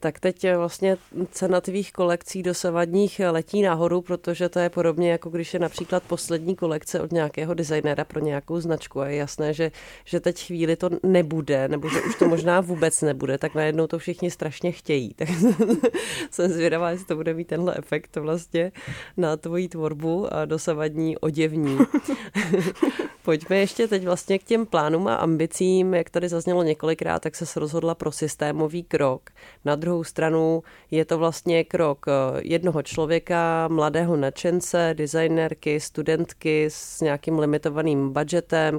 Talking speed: 150 wpm